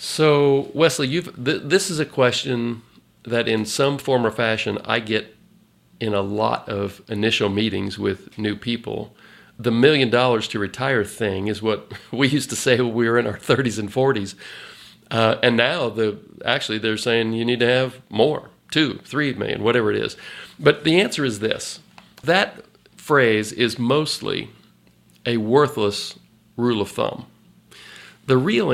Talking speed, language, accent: 165 wpm, English, American